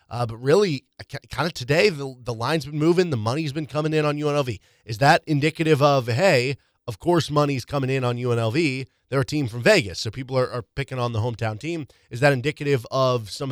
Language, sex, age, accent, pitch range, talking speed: English, male, 20-39, American, 115-145 Hz, 220 wpm